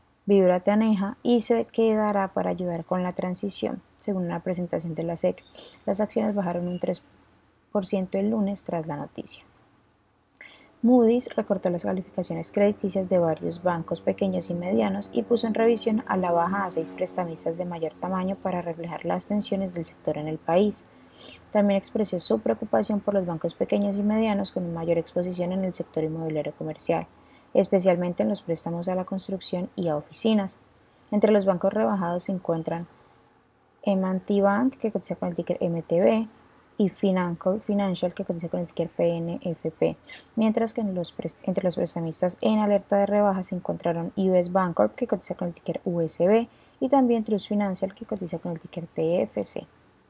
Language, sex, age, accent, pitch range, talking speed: Spanish, female, 20-39, Colombian, 170-205 Hz, 170 wpm